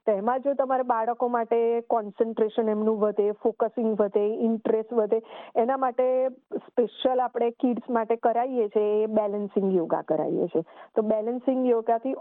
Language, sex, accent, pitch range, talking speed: Gujarati, female, native, 225-260 Hz, 135 wpm